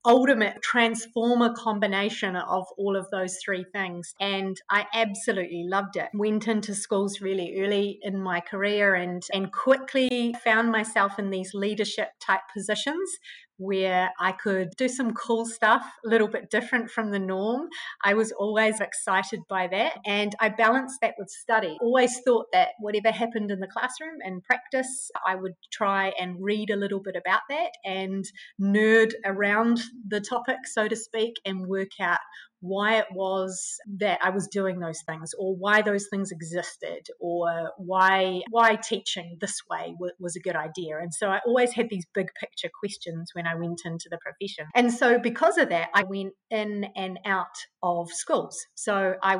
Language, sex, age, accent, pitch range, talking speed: English, female, 30-49, Australian, 190-225 Hz, 170 wpm